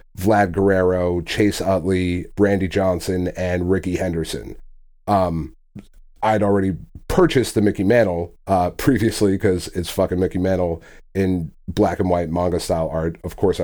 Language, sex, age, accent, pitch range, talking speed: English, male, 30-49, American, 95-115 Hz, 140 wpm